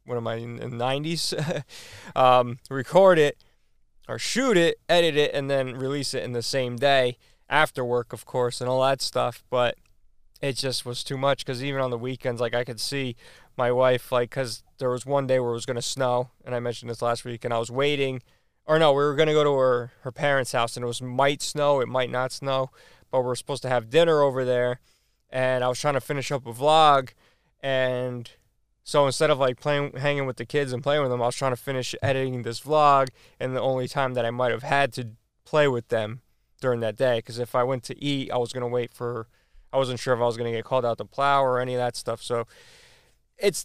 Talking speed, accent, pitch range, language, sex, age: 240 wpm, American, 120-135 Hz, English, male, 20-39